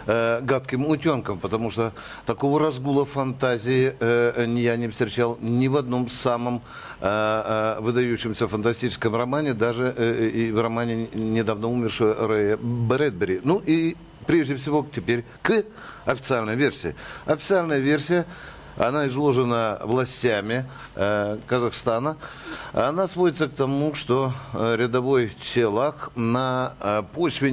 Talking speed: 100 wpm